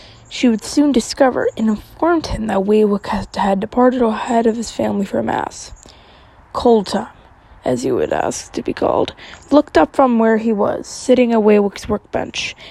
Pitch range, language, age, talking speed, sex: 210-260 Hz, English, 20-39, 170 wpm, female